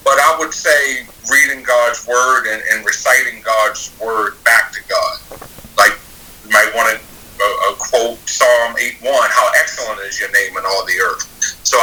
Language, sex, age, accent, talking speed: English, male, 50-69, American, 180 wpm